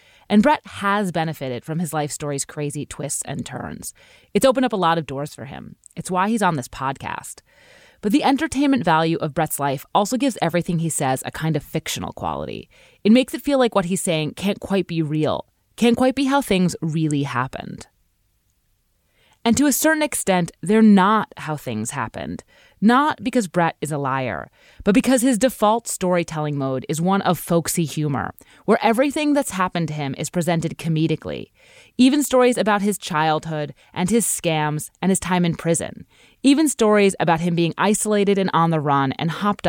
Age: 30-49